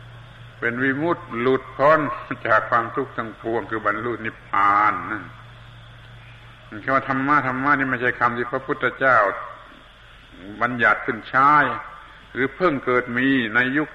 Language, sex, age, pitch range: Thai, male, 70-89, 115-135 Hz